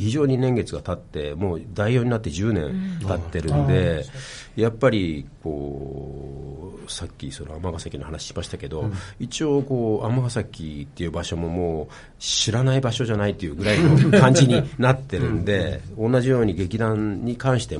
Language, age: Japanese, 50-69